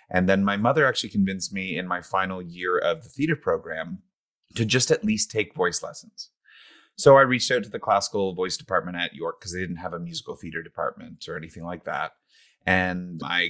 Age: 30-49